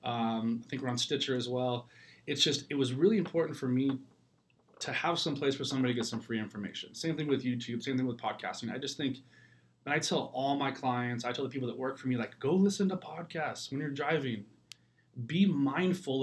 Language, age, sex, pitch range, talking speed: English, 20-39, male, 120-140 Hz, 230 wpm